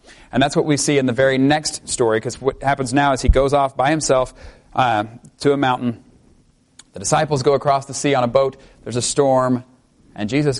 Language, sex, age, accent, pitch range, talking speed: English, male, 30-49, American, 115-140 Hz, 215 wpm